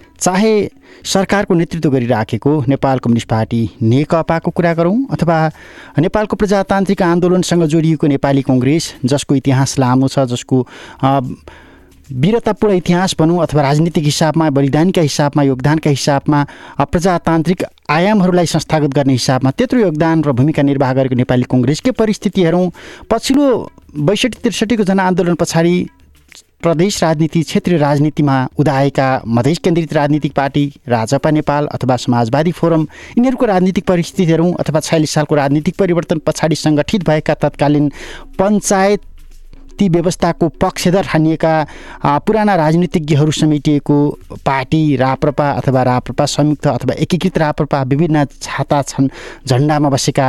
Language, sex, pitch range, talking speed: English, male, 135-180 Hz, 100 wpm